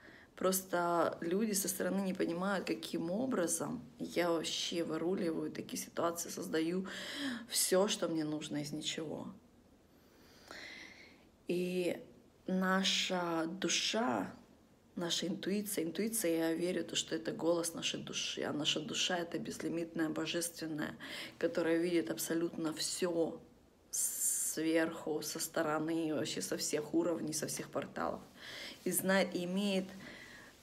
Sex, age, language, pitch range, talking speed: female, 20-39, Russian, 160-185 Hz, 110 wpm